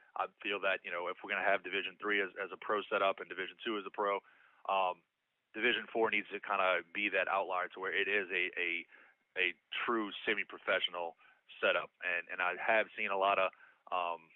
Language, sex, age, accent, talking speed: English, male, 30-49, American, 215 wpm